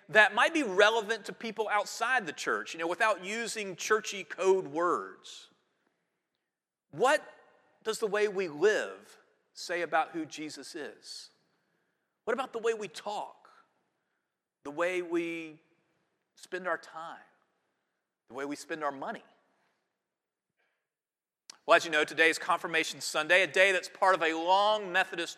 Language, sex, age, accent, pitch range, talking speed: English, male, 40-59, American, 185-255 Hz, 145 wpm